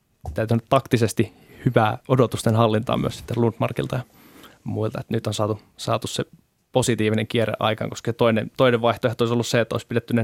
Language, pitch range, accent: Finnish, 110-125 Hz, native